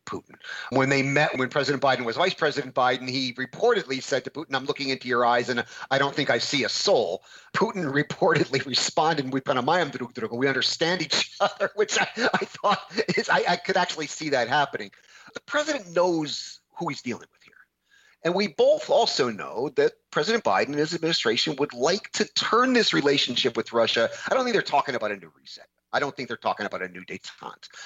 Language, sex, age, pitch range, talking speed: English, male, 40-59, 130-175 Hz, 200 wpm